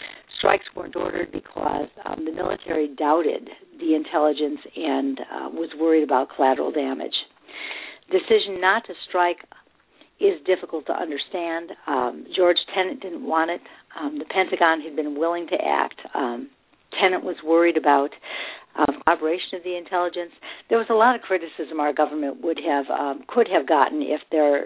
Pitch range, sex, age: 145-185 Hz, female, 50-69